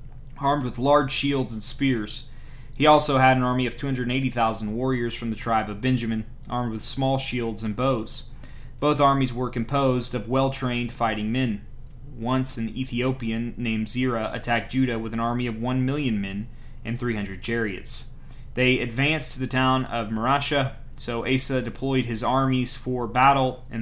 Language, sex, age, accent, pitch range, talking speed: English, male, 30-49, American, 115-130 Hz, 165 wpm